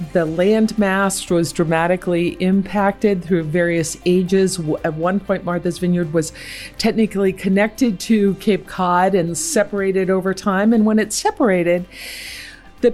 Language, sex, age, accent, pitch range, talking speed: English, female, 50-69, American, 175-235 Hz, 130 wpm